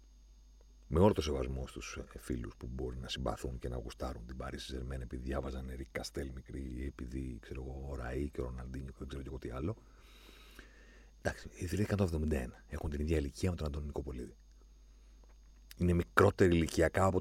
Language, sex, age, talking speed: Greek, male, 40-59, 165 wpm